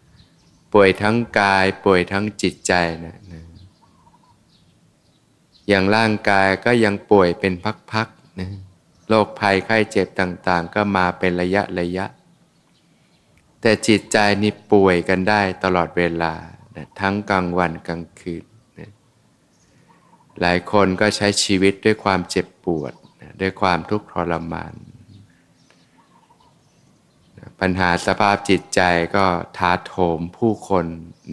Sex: male